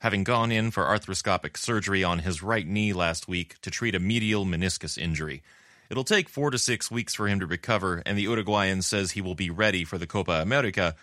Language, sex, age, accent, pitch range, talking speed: English, male, 30-49, American, 85-115 Hz, 220 wpm